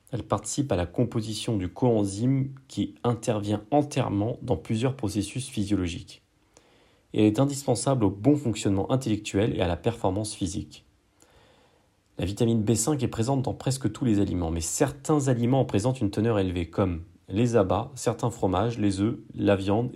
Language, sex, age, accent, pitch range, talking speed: French, male, 40-59, French, 95-120 Hz, 160 wpm